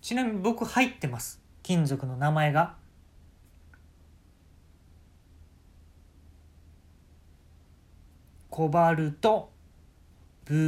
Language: Japanese